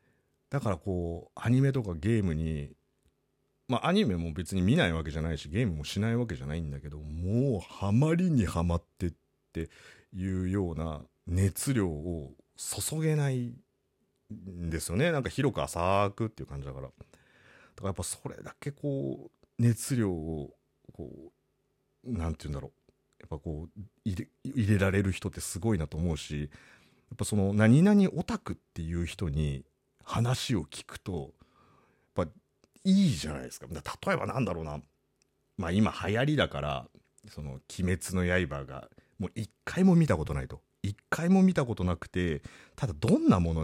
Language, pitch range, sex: Japanese, 80-125 Hz, male